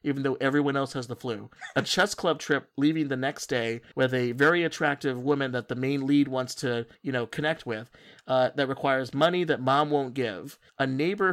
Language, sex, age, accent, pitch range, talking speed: English, male, 30-49, American, 125-150 Hz, 210 wpm